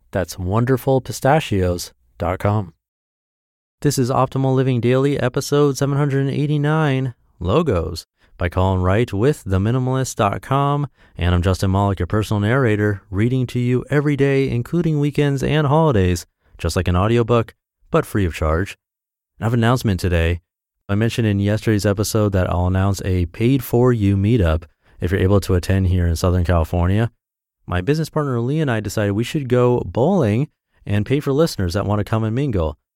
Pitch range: 90-125 Hz